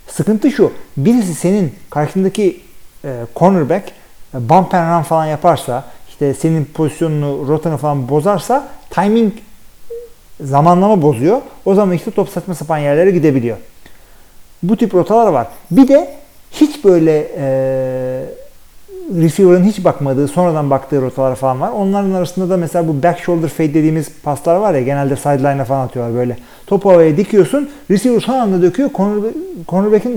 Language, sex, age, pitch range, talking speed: Turkish, male, 40-59, 130-190 Hz, 140 wpm